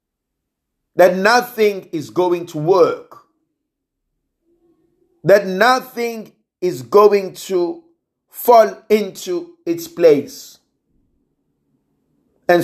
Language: English